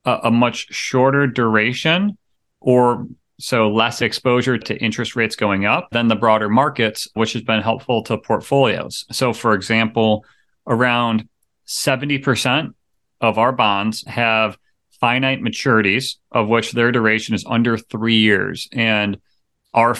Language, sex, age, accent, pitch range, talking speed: English, male, 30-49, American, 110-125 Hz, 130 wpm